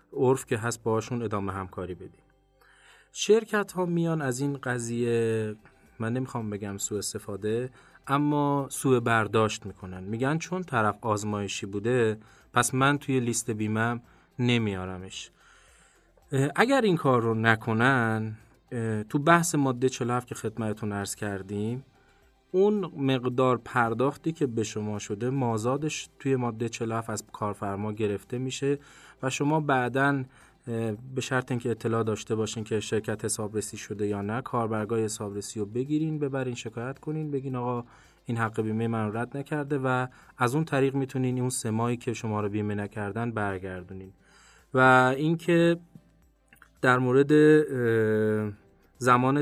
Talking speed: 135 wpm